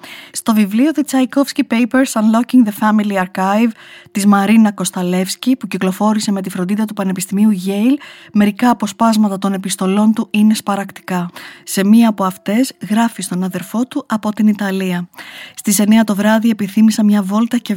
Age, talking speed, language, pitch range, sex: 20-39, 160 wpm, Greek, 185-220 Hz, female